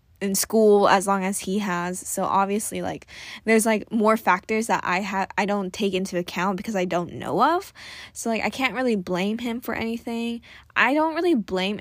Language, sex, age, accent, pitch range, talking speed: English, female, 10-29, American, 195-245 Hz, 205 wpm